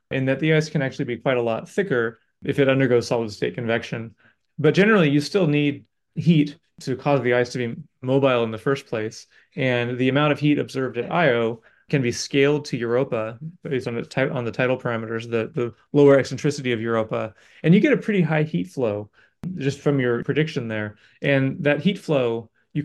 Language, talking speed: English, 205 wpm